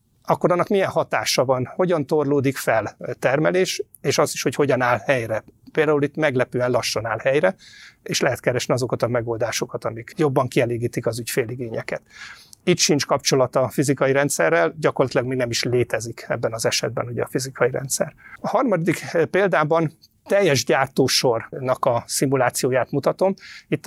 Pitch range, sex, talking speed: 125-165 Hz, male, 150 wpm